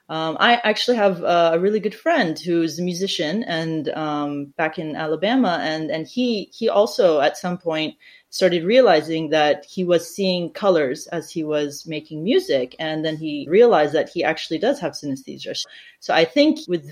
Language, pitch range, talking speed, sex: English, 155-195 Hz, 175 wpm, female